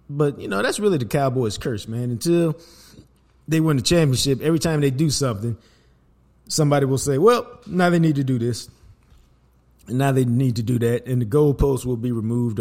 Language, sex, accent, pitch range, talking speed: English, male, American, 110-145 Hz, 200 wpm